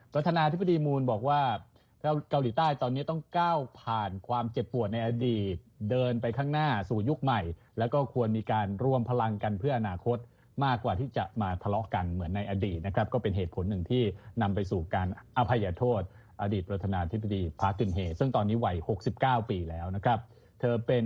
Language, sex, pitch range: Thai, male, 105-125 Hz